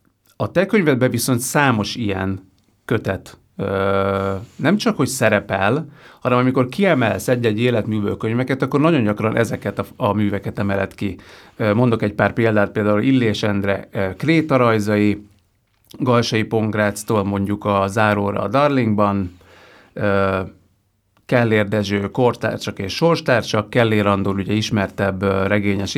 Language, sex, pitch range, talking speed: Hungarian, male, 100-120 Hz, 120 wpm